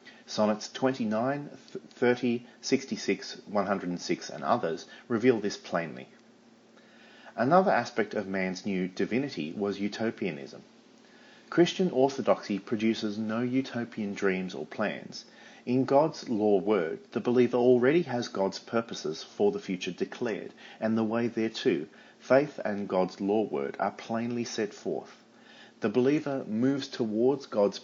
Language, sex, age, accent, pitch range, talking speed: English, male, 40-59, Australian, 100-125 Hz, 125 wpm